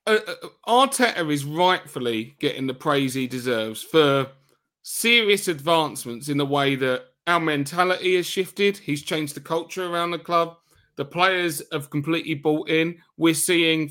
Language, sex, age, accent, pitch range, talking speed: English, male, 30-49, British, 145-190 Hz, 150 wpm